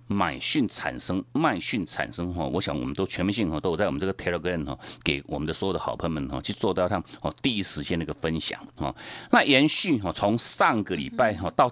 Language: Chinese